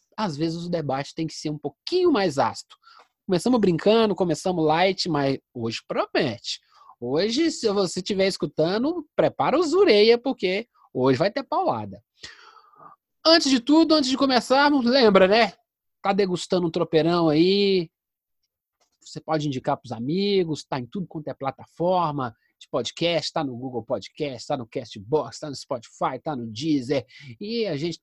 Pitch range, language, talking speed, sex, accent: 160-245 Hz, Portuguese, 155 wpm, male, Brazilian